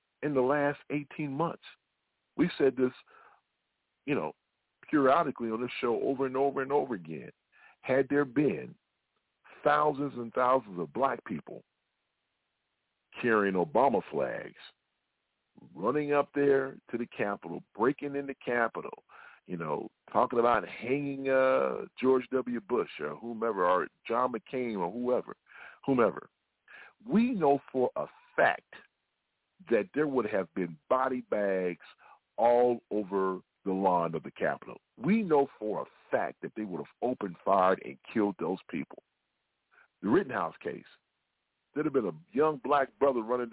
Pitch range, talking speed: 115-145 Hz, 145 wpm